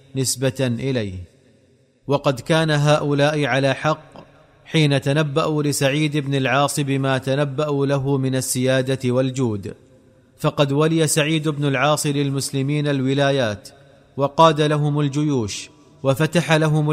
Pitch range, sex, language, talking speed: 135-150 Hz, male, Arabic, 105 wpm